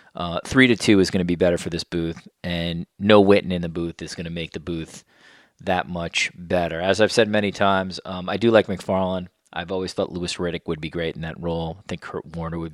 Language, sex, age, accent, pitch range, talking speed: English, male, 30-49, American, 90-105 Hz, 250 wpm